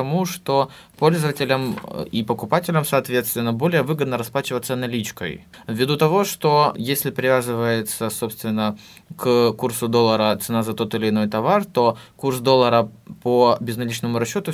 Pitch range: 115-155 Hz